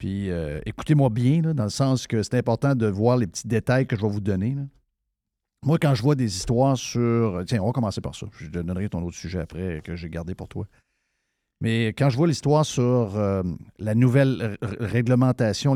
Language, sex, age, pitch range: French, male, 50-69, 110-135 Hz